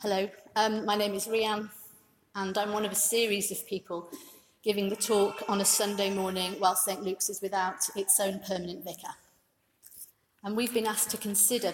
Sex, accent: female, British